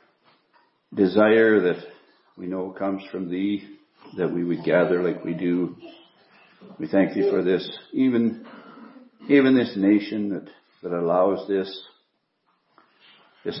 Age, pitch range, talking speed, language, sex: 60-79, 90-110 Hz, 125 wpm, English, male